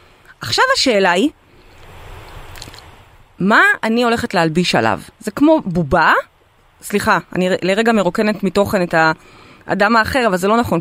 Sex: female